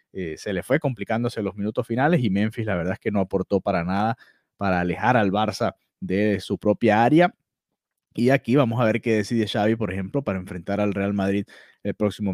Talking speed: 210 wpm